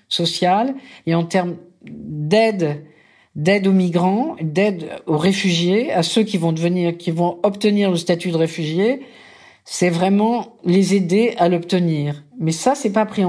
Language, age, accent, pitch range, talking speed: French, 50-69, French, 155-205 Hz, 155 wpm